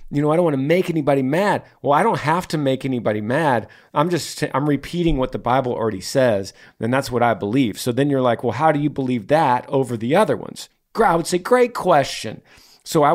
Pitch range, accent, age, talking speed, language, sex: 115-150 Hz, American, 40-59, 235 wpm, English, male